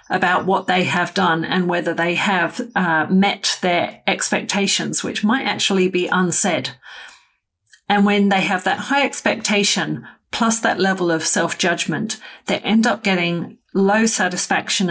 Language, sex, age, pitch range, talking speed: English, female, 40-59, 175-210 Hz, 145 wpm